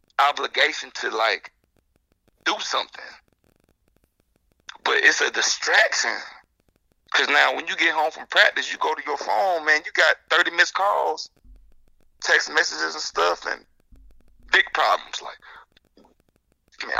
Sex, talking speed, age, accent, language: male, 130 wpm, 30-49, American, English